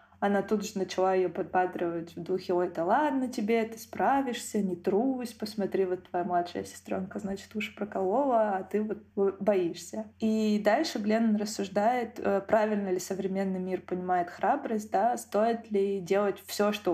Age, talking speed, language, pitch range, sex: 20-39, 155 wpm, Russian, 185-210 Hz, female